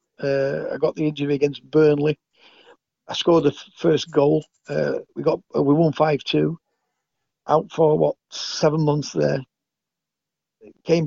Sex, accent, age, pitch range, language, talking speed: male, British, 50-69, 140-160 Hz, English, 145 wpm